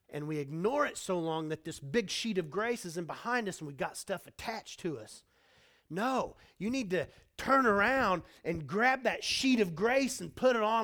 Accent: American